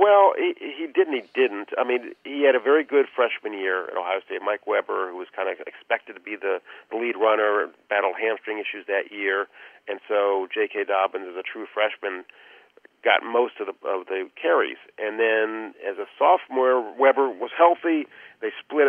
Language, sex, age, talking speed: English, male, 50-69, 195 wpm